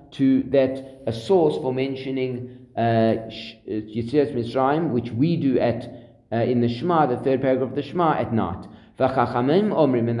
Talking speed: 155 wpm